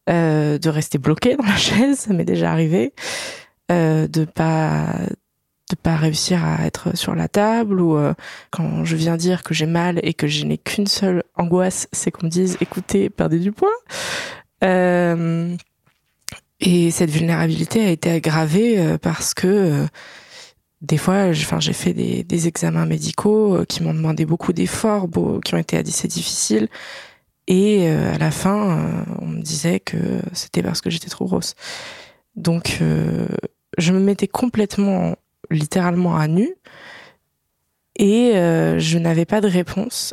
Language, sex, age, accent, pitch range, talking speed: French, female, 20-39, French, 160-195 Hz, 160 wpm